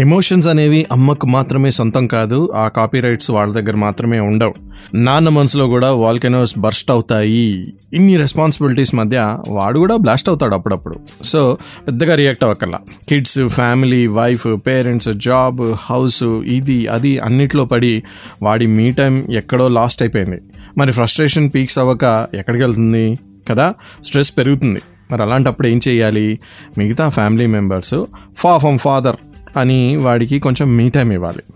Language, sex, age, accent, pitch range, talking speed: Telugu, male, 20-39, native, 110-135 Hz, 135 wpm